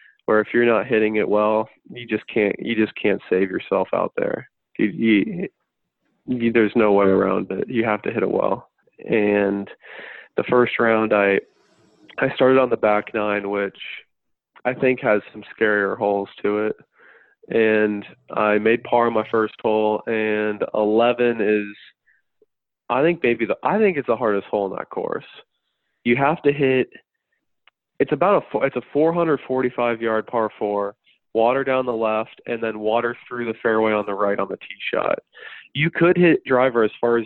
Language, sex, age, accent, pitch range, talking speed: English, male, 20-39, American, 105-120 Hz, 180 wpm